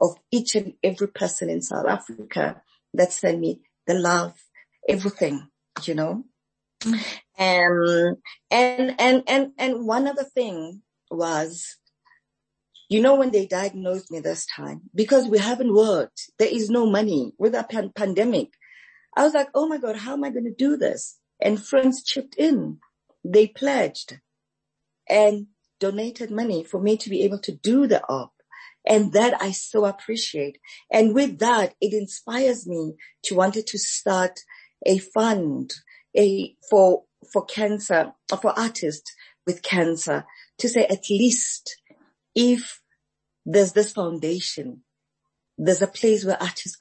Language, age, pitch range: English, 40-59, 180-245 Hz